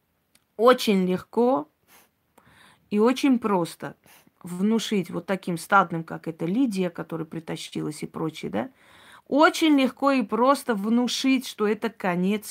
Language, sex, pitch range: Russian, female, 180-250 Hz